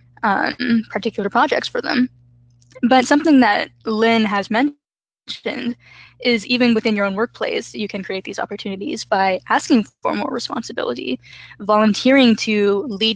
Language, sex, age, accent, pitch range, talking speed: English, female, 10-29, American, 195-225 Hz, 135 wpm